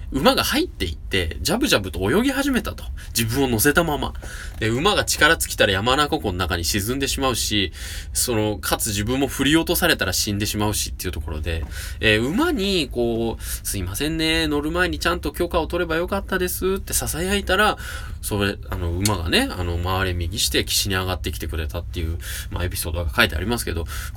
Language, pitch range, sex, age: Japanese, 85-140 Hz, male, 20-39